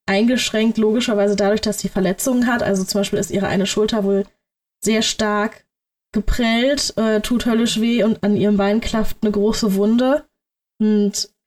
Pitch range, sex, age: 205-230 Hz, female, 20-39